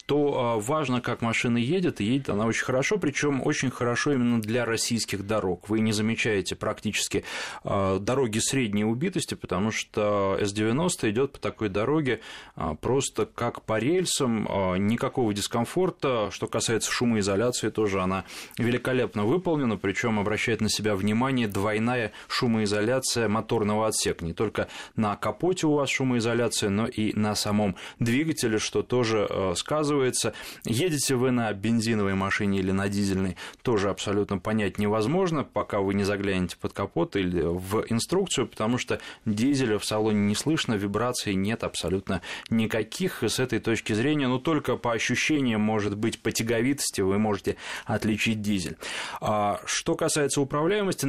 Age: 20-39